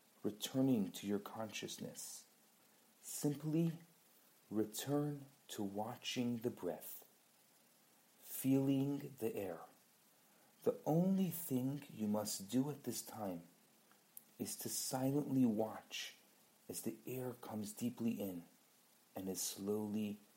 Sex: male